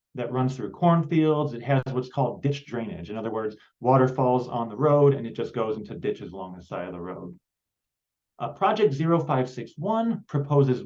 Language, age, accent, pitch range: English, 30-49, American, 115-145 Hz